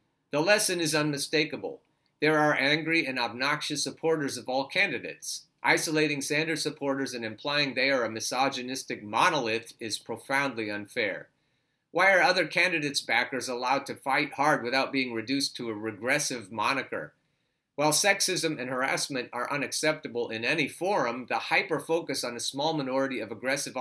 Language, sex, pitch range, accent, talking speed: English, male, 125-155 Hz, American, 150 wpm